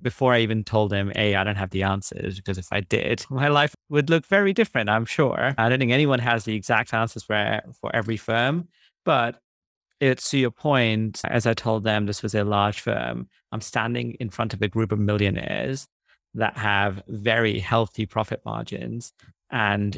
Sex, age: male, 30-49